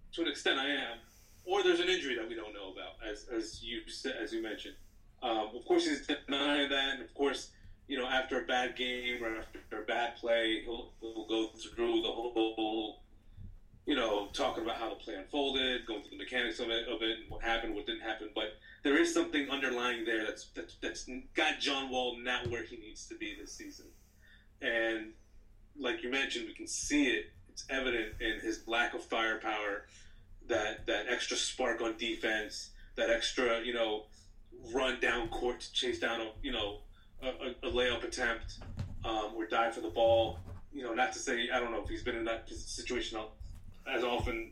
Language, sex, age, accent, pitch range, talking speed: English, male, 30-49, American, 110-155 Hz, 200 wpm